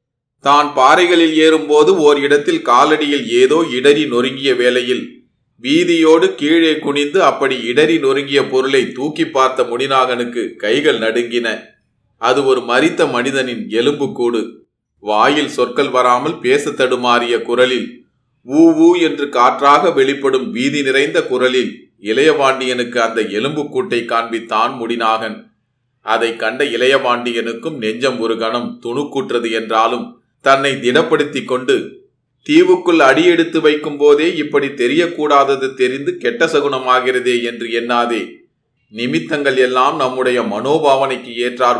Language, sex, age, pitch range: Tamil, male, 30-49, 120-155 Hz